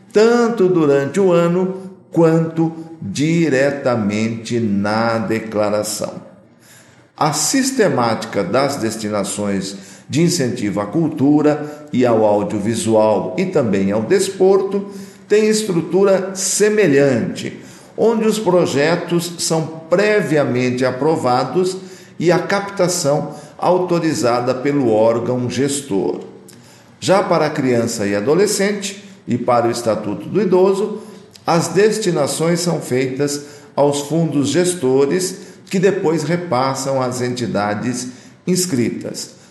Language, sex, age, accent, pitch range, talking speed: Portuguese, male, 50-69, Brazilian, 125-185 Hz, 95 wpm